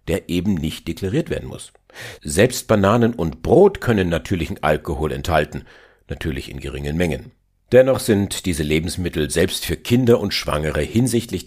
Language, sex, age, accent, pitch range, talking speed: German, male, 50-69, German, 80-115 Hz, 145 wpm